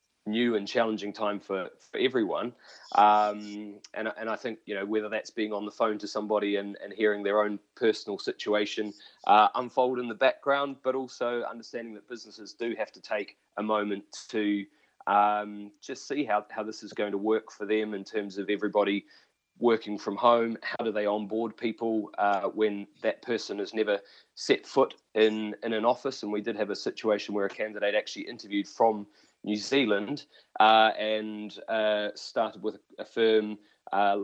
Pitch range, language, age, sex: 105-115 Hz, English, 20-39, male